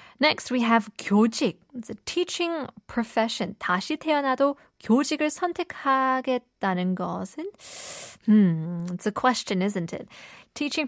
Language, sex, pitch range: Korean, female, 185-240 Hz